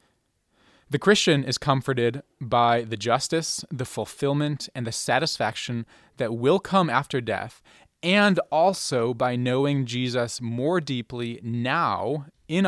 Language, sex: English, male